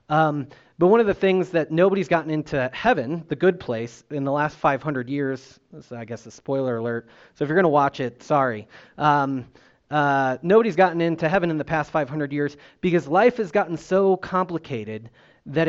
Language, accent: English, American